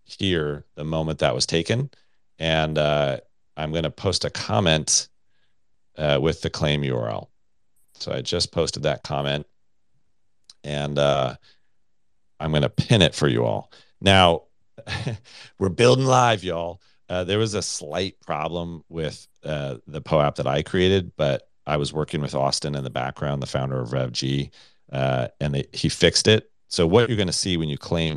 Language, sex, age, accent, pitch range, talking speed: English, male, 40-59, American, 70-85 Hz, 170 wpm